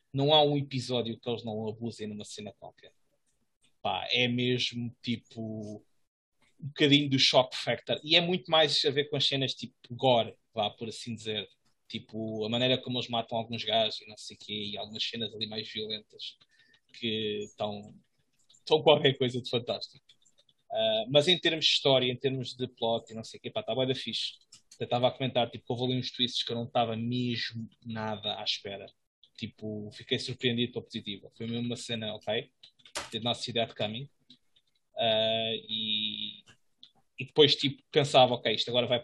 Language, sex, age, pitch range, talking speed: English, male, 20-39, 115-135 Hz, 180 wpm